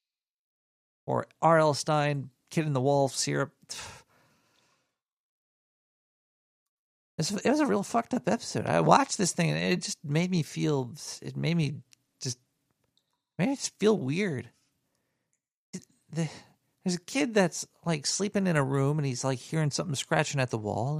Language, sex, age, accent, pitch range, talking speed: English, male, 40-59, American, 135-195 Hz, 155 wpm